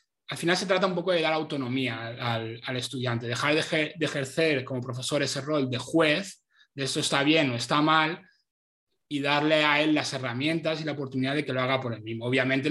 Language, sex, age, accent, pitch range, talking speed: Spanish, male, 20-39, Spanish, 130-155 Hz, 220 wpm